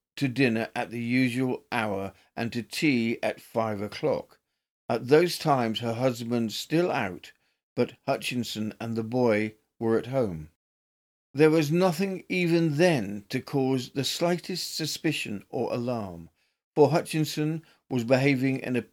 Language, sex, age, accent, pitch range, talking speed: English, male, 50-69, British, 110-145 Hz, 145 wpm